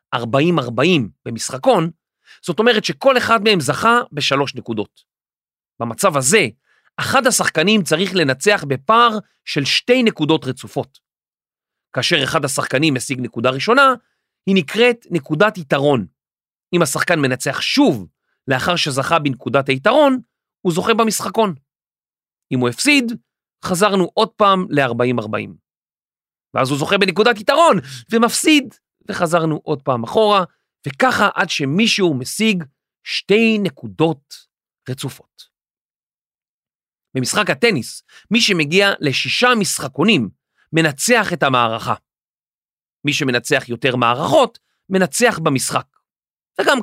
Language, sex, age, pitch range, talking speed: Hebrew, male, 30-49, 135-215 Hz, 105 wpm